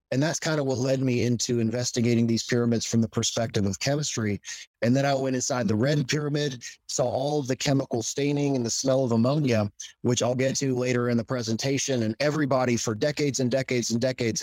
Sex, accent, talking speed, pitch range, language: male, American, 210 wpm, 115-135 Hz, English